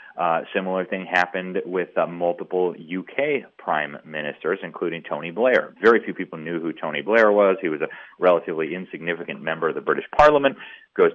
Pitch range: 85-120 Hz